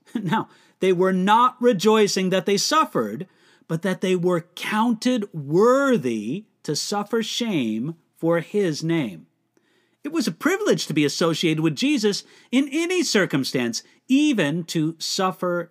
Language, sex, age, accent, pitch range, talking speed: English, male, 50-69, American, 165-225 Hz, 135 wpm